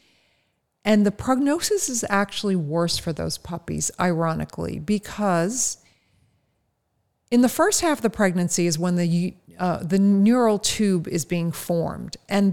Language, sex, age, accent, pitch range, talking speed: English, female, 40-59, American, 165-215 Hz, 140 wpm